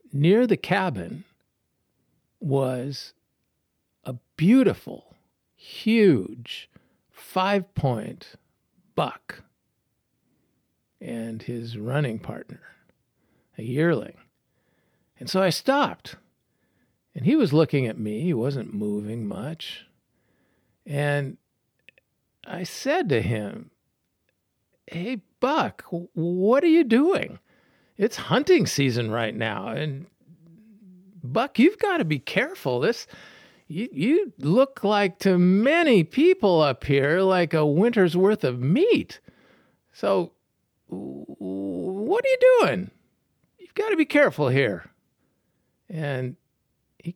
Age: 50-69